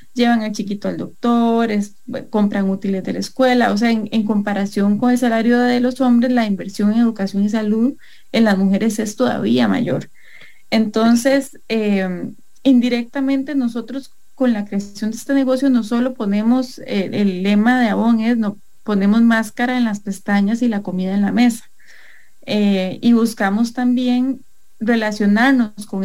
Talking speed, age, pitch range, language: 155 wpm, 30-49, 205-245 Hz, English